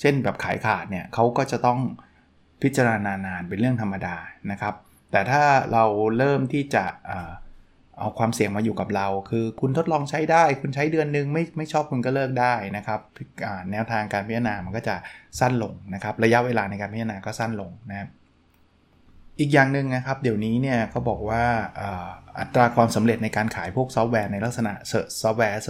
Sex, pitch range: male, 100-120 Hz